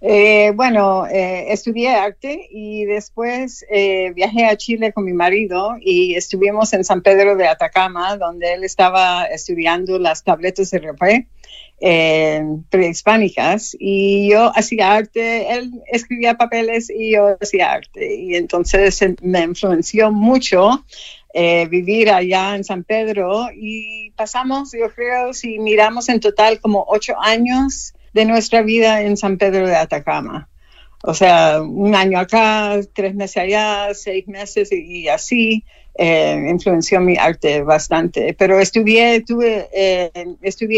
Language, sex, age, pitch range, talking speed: Spanish, female, 50-69, 180-220 Hz, 135 wpm